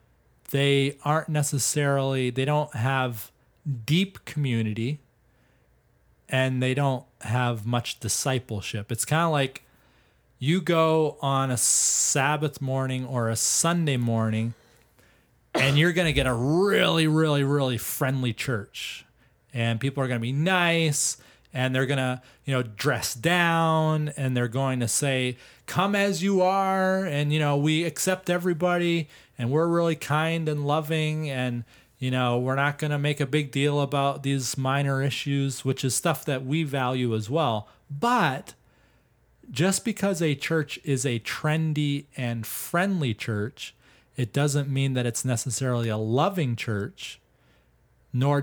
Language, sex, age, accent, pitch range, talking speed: English, male, 30-49, American, 120-150 Hz, 145 wpm